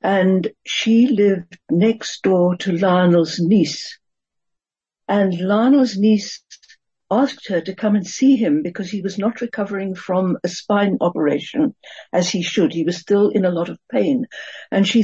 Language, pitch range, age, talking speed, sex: English, 185-230 Hz, 60-79, 160 wpm, female